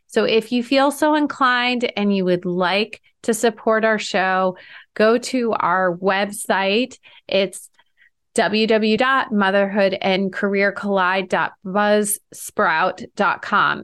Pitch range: 190-225 Hz